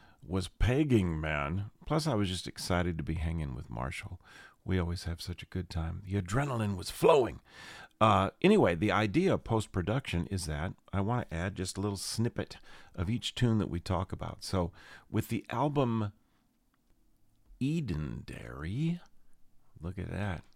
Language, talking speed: English, 165 wpm